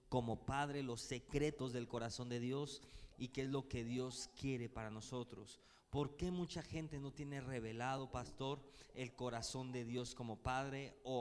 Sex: male